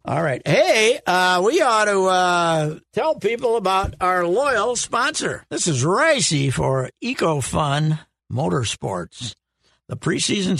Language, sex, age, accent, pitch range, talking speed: English, male, 60-79, American, 155-200 Hz, 125 wpm